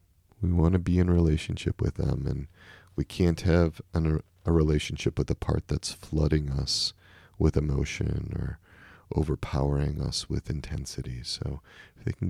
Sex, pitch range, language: male, 75-95 Hz, English